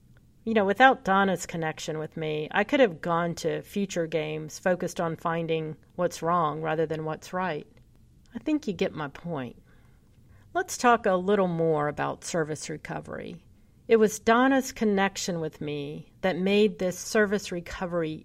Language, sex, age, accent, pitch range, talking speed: English, female, 50-69, American, 160-205 Hz, 160 wpm